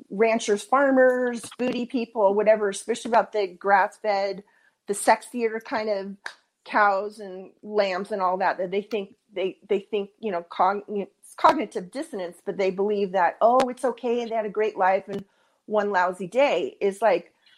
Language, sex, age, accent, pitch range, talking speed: English, female, 40-59, American, 195-245 Hz, 170 wpm